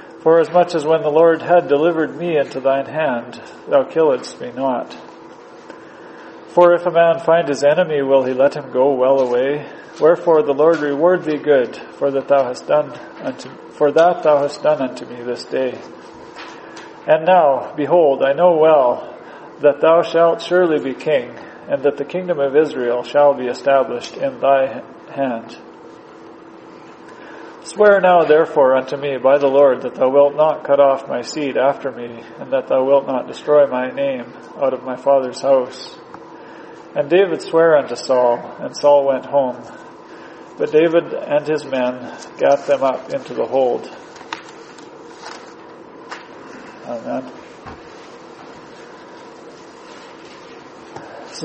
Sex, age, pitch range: male, 40-59, 135-165 Hz